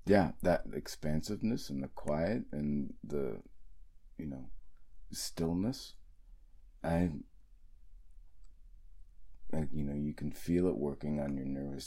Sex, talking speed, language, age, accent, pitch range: male, 115 wpm, English, 30-49, American, 75-85 Hz